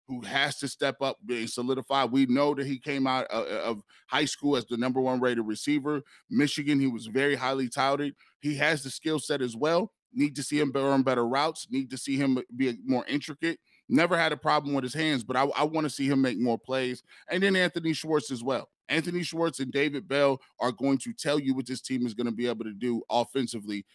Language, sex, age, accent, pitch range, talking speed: English, male, 20-39, American, 120-150 Hz, 230 wpm